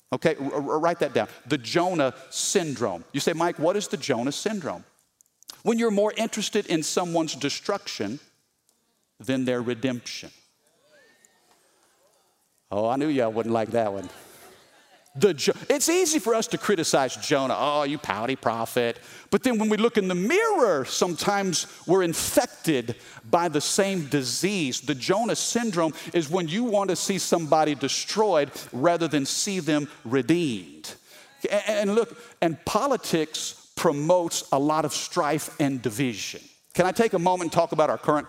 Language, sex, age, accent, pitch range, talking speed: English, male, 50-69, American, 150-210 Hz, 150 wpm